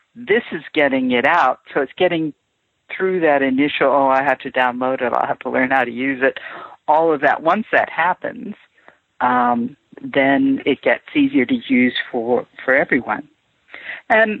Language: English